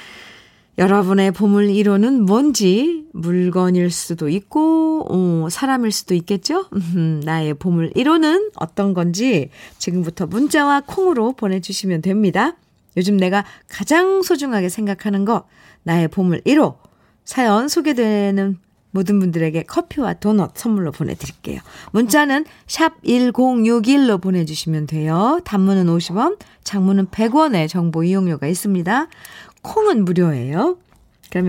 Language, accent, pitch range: Korean, native, 180-265 Hz